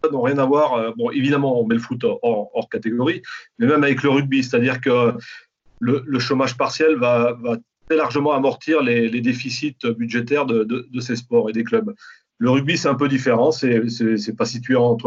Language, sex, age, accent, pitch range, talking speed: French, male, 40-59, French, 120-145 Hz, 190 wpm